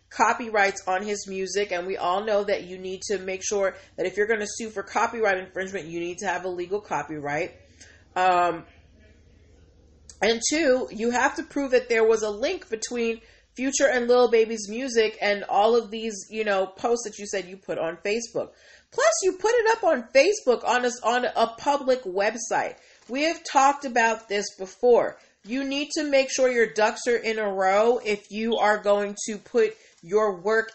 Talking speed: 195 wpm